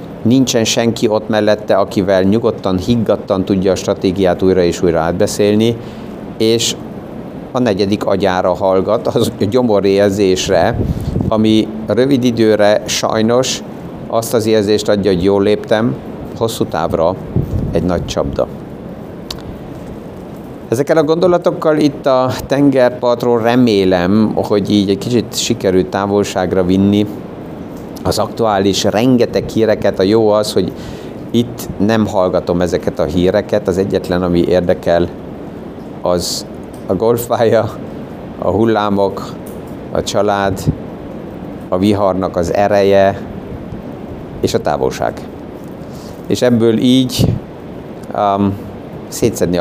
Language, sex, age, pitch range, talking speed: Hungarian, male, 50-69, 95-115 Hz, 105 wpm